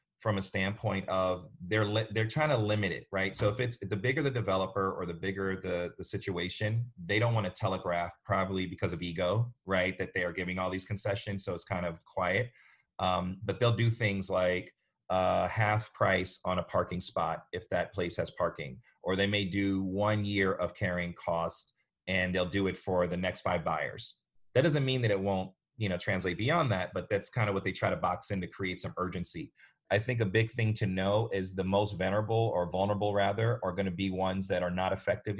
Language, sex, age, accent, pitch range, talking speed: English, male, 30-49, American, 95-105 Hz, 220 wpm